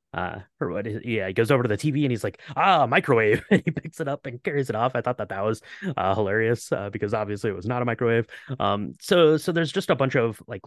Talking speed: 260 wpm